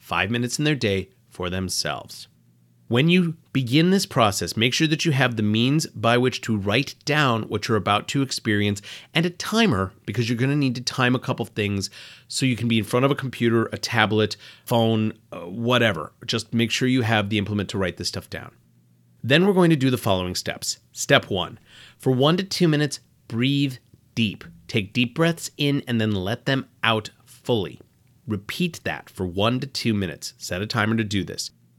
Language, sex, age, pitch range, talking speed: English, male, 30-49, 105-140 Hz, 205 wpm